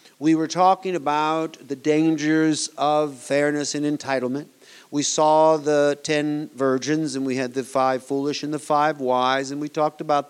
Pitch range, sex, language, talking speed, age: 145-185 Hz, male, English, 170 wpm, 50-69